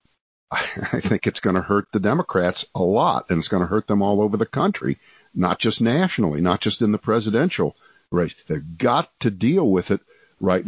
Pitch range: 95-110 Hz